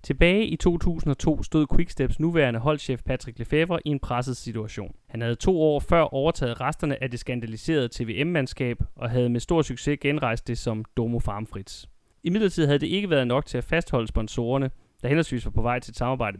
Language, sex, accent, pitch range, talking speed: Danish, male, native, 115-150 Hz, 195 wpm